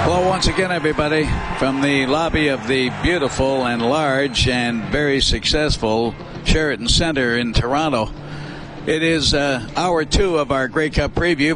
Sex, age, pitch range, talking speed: male, 60-79, 120-150 Hz, 150 wpm